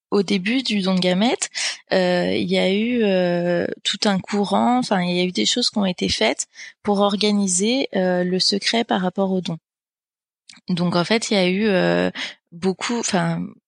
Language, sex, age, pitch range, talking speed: French, female, 20-39, 185-225 Hz, 195 wpm